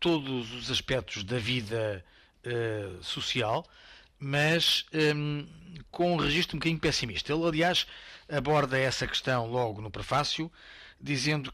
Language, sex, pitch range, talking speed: Portuguese, male, 125-160 Hz, 125 wpm